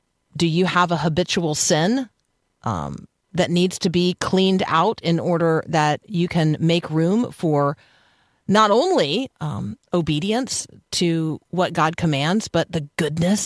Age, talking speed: 40-59, 145 wpm